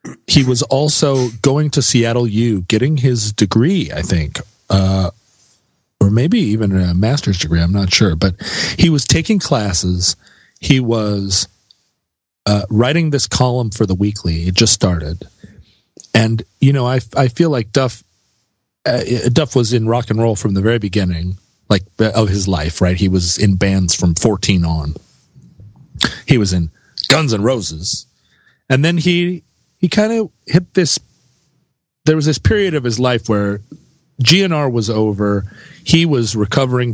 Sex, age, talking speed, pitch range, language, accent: male, 40-59, 160 wpm, 100-145 Hz, English, American